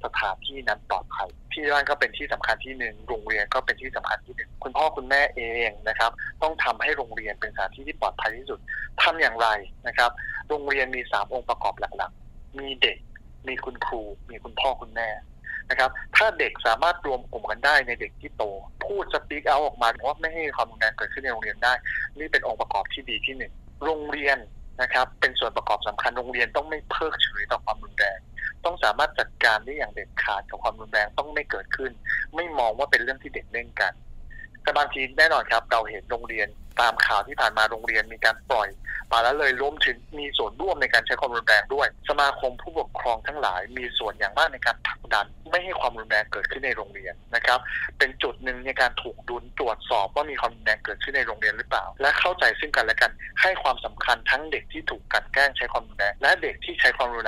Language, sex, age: Thai, male, 20-39